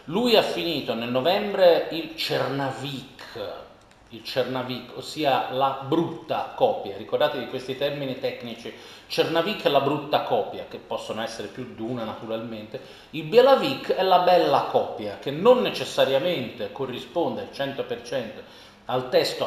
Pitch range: 125-190 Hz